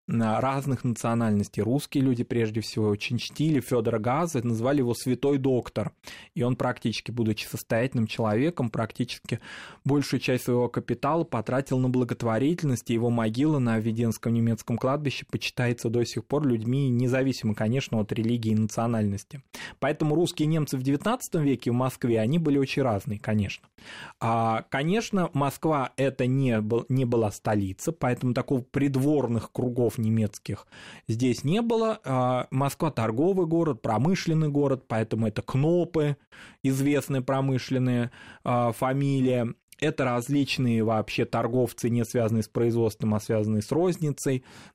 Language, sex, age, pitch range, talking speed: Russian, male, 20-39, 115-140 Hz, 135 wpm